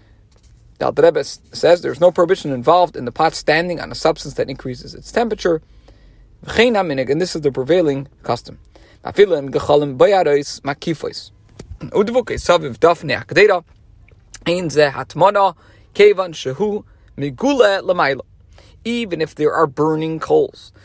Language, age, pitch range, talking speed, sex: English, 40-59, 135-205 Hz, 90 wpm, male